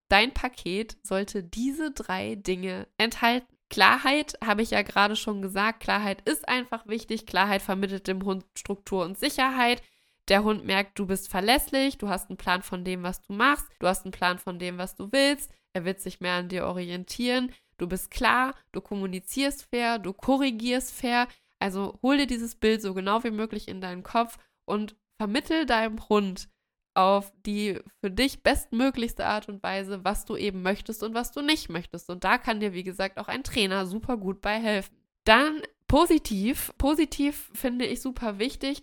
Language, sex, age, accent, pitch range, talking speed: German, female, 20-39, German, 195-250 Hz, 180 wpm